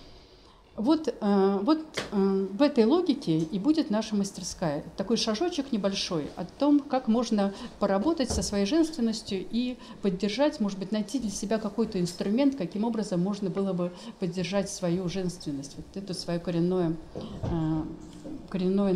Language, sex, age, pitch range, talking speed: Russian, female, 50-69, 180-225 Hz, 135 wpm